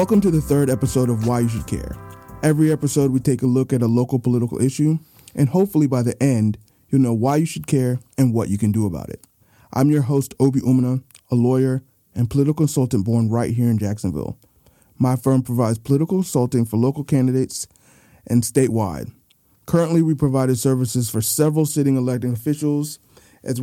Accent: American